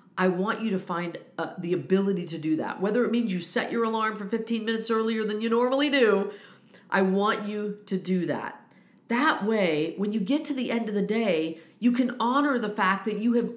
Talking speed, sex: 225 wpm, female